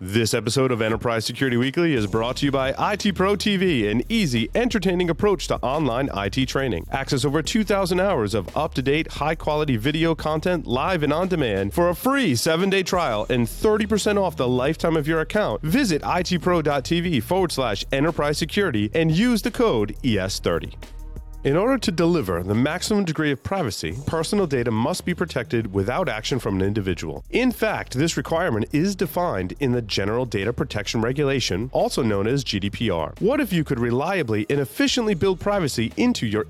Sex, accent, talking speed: male, American, 180 wpm